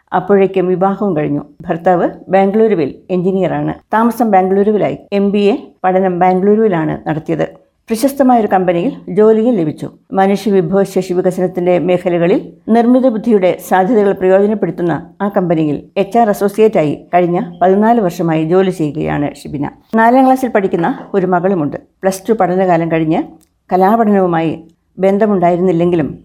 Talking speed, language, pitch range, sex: 110 wpm, Malayalam, 175-220 Hz, female